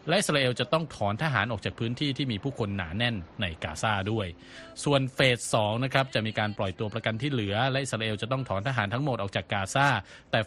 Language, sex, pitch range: Thai, male, 100-130 Hz